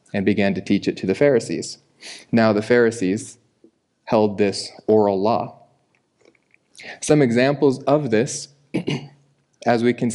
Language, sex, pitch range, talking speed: English, male, 105-120 Hz, 130 wpm